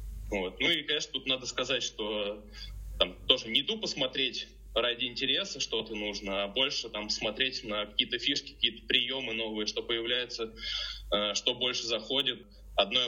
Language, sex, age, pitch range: Russian, male, 20-39, 110-130 Hz